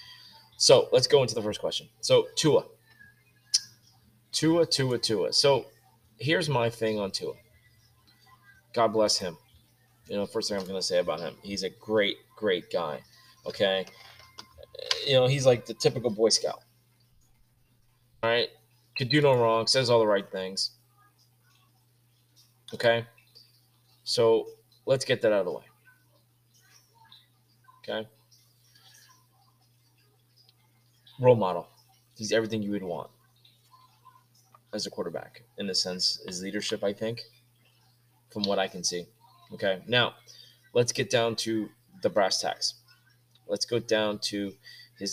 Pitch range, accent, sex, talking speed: 115-125 Hz, American, male, 135 wpm